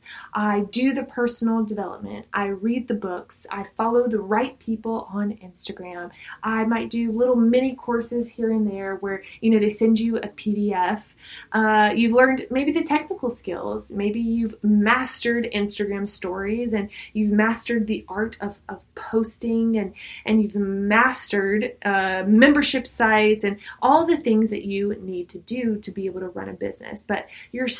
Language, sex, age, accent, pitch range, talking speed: English, female, 20-39, American, 200-235 Hz, 170 wpm